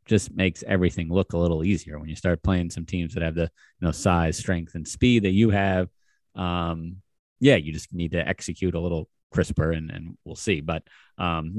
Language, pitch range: English, 85-105 Hz